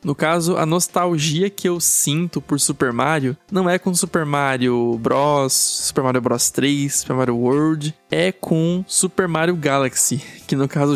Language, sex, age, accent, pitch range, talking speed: Portuguese, male, 20-39, Brazilian, 130-155 Hz, 170 wpm